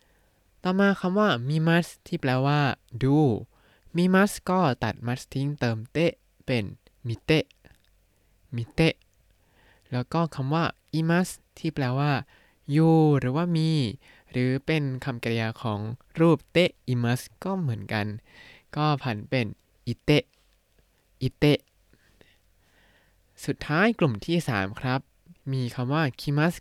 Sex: male